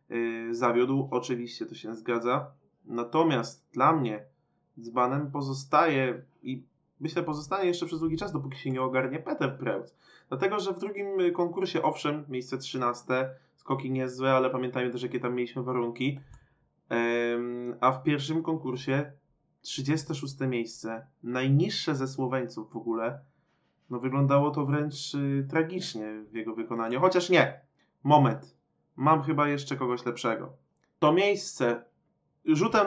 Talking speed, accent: 130 wpm, native